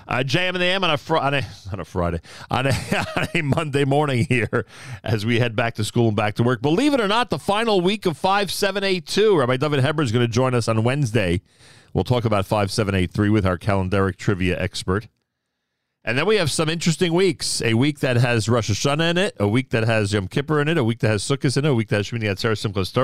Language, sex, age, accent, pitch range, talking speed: English, male, 40-59, American, 110-140 Hz, 255 wpm